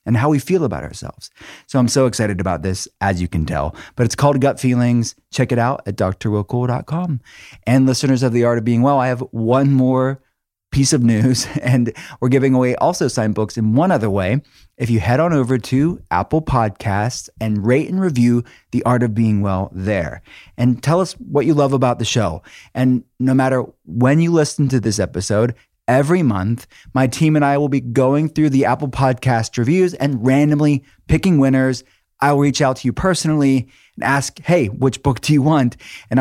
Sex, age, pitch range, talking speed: male, 30-49, 115-140 Hz, 200 wpm